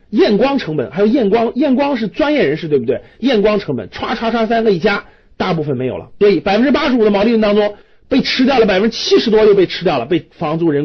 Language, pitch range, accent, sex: Chinese, 155-250 Hz, native, male